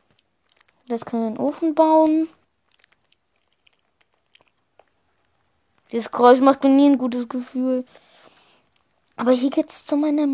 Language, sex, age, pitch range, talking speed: German, female, 20-39, 245-300 Hz, 120 wpm